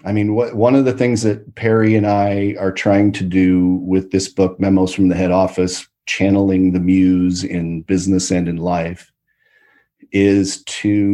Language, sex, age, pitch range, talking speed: English, male, 40-59, 95-110 Hz, 170 wpm